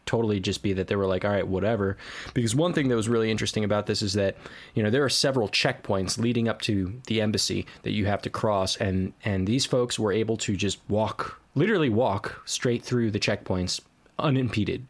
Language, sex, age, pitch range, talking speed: English, male, 20-39, 95-120 Hz, 215 wpm